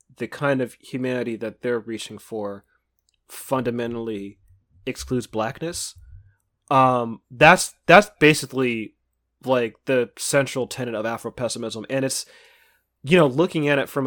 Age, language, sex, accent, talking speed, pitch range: 30-49, English, male, American, 130 wpm, 110-135 Hz